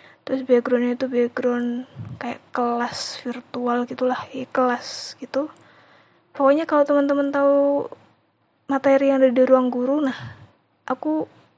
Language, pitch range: Indonesian, 250-275 Hz